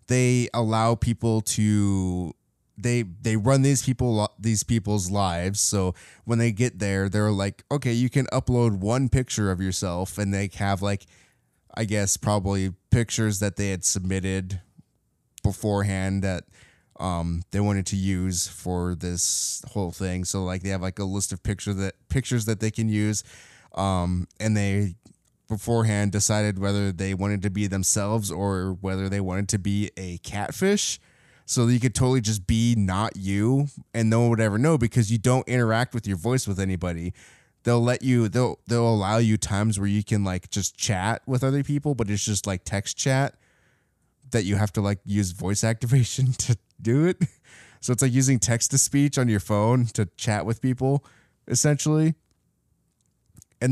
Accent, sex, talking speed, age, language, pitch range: American, male, 175 wpm, 20-39, English, 95-120 Hz